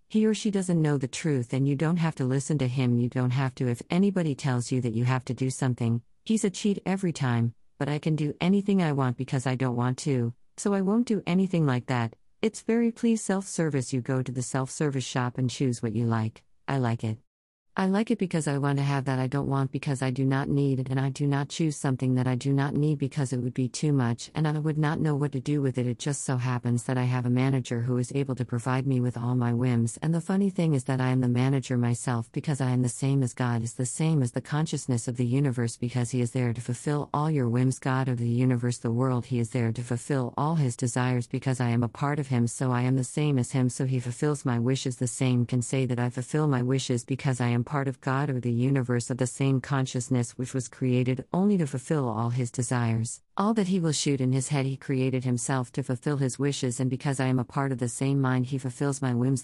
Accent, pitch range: American, 125-145 Hz